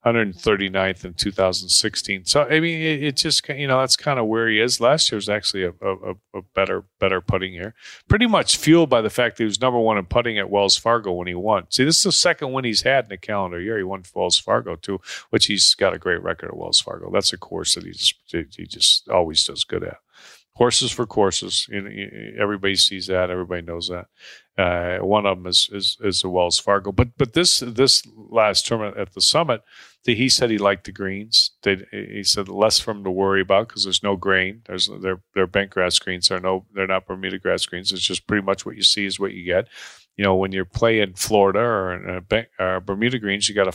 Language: English